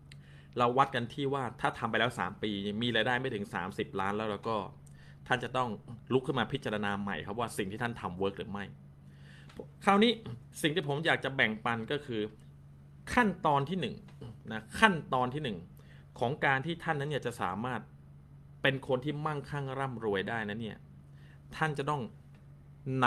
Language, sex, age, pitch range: Thai, male, 20-39, 90-135 Hz